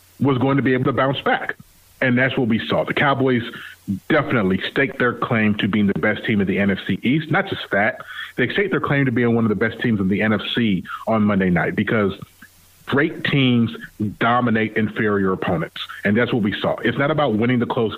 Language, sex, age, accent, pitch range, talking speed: English, male, 30-49, American, 100-125 Hz, 215 wpm